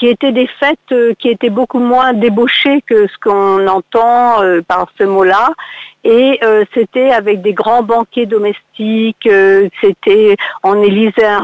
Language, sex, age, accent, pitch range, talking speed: French, female, 50-69, French, 200-255 Hz, 165 wpm